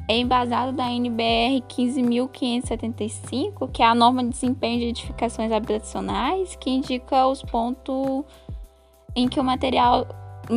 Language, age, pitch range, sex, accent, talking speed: Portuguese, 10-29, 225-270 Hz, female, Brazilian, 130 wpm